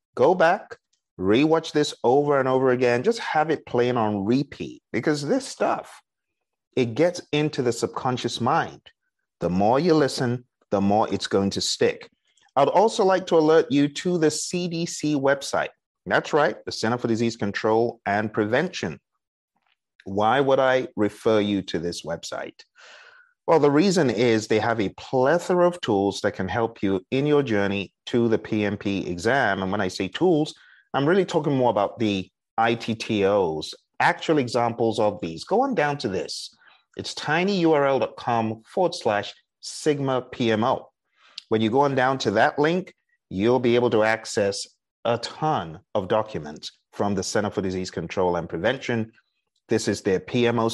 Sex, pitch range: male, 110-150 Hz